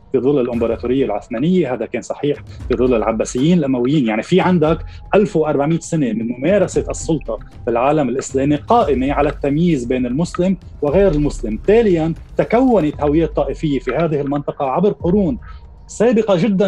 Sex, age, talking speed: male, 30-49, 145 wpm